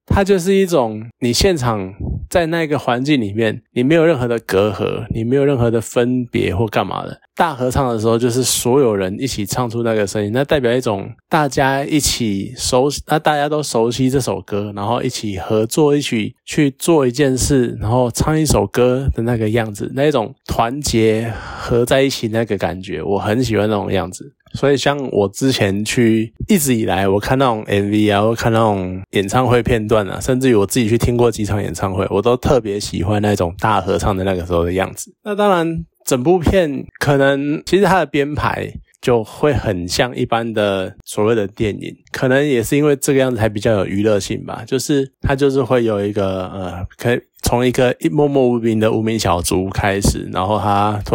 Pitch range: 105-135 Hz